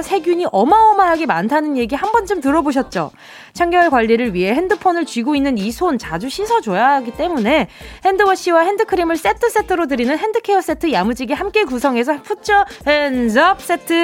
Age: 20-39